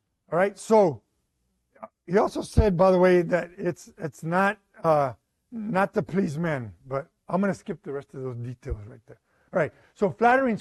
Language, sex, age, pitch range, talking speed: English, male, 50-69, 170-225 Hz, 190 wpm